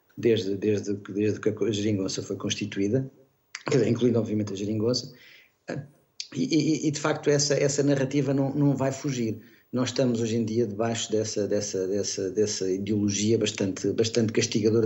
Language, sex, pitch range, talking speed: Portuguese, male, 105-130 Hz, 160 wpm